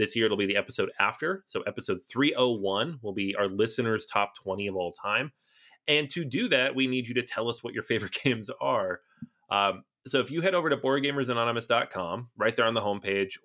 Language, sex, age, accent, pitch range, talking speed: English, male, 30-49, American, 100-125 Hz, 210 wpm